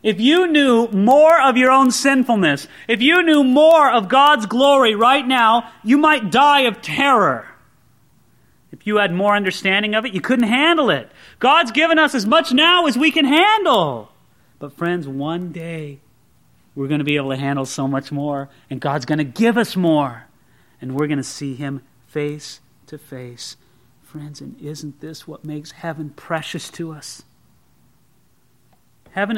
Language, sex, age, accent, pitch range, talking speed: English, male, 30-49, American, 145-240 Hz, 170 wpm